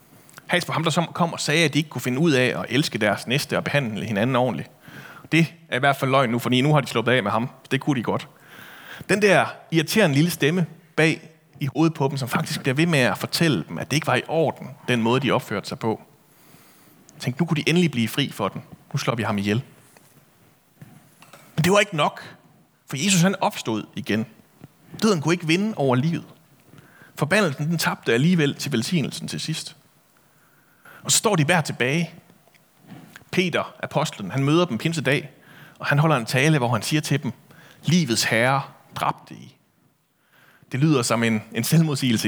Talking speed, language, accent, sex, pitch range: 200 wpm, Danish, native, male, 135-175 Hz